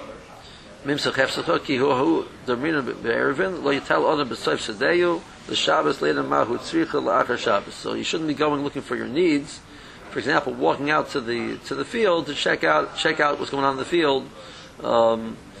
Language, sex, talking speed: English, male, 115 wpm